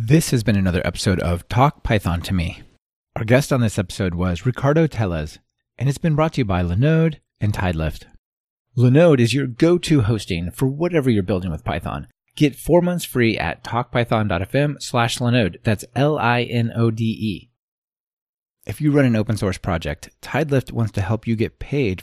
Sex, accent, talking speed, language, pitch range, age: male, American, 170 wpm, English, 95-130 Hz, 30-49